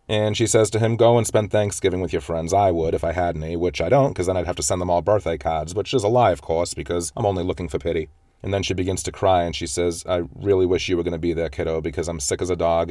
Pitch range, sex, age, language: 90-110 Hz, male, 30-49, English